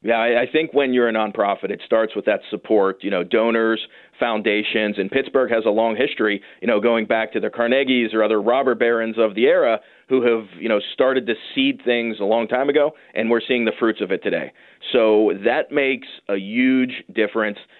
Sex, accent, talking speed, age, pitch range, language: male, American, 210 wpm, 30-49, 110-135 Hz, English